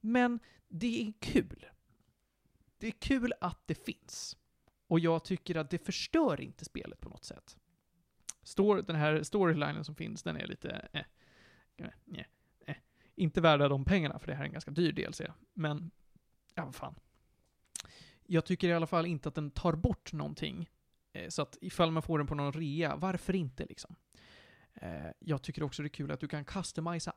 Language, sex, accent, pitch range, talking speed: Swedish, male, native, 150-185 Hz, 185 wpm